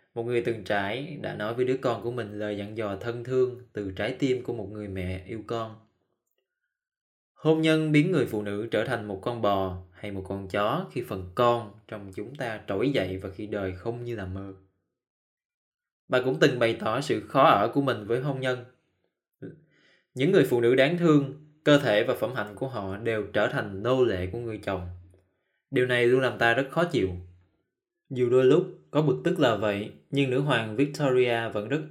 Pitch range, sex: 105-140 Hz, male